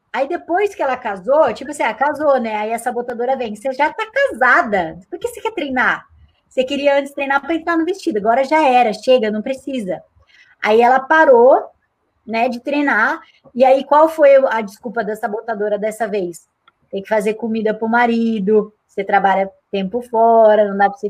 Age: 20-39